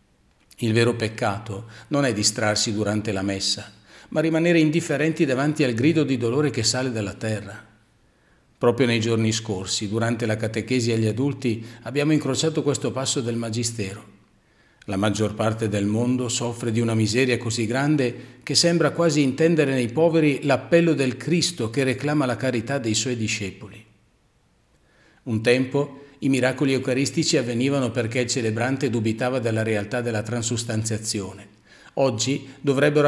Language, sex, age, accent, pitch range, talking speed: Italian, male, 40-59, native, 110-135 Hz, 145 wpm